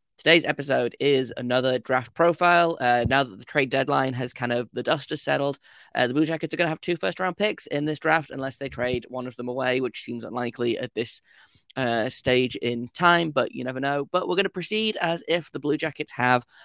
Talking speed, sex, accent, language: 235 wpm, male, British, English